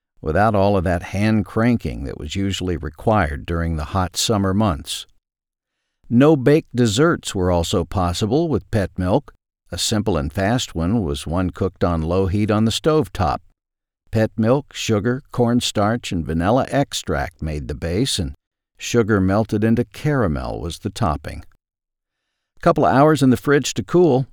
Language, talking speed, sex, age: English, 155 wpm, male, 50-69